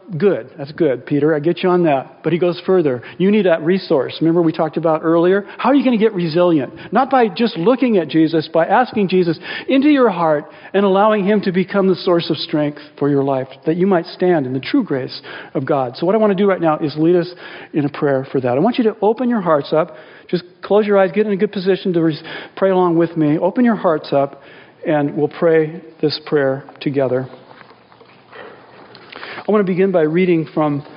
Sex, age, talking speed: male, 40-59, 230 wpm